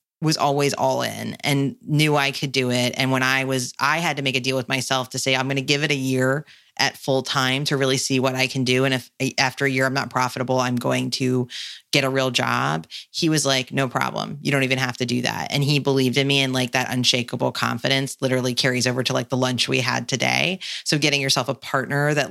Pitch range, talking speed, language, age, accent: 130-155 Hz, 255 wpm, English, 30-49, American